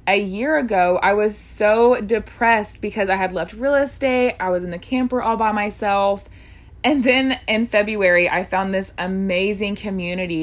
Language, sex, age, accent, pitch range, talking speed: English, female, 20-39, American, 185-230 Hz, 175 wpm